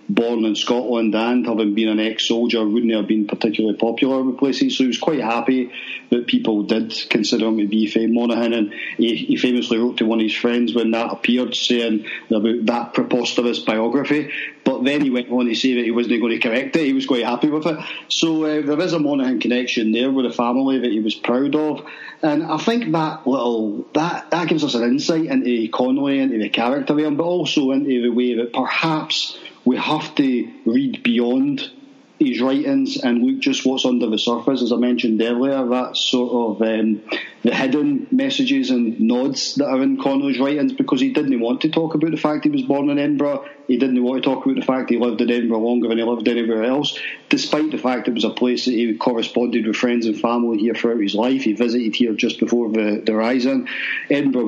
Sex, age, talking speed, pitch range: male, 40-59, 220 wpm, 115-155 Hz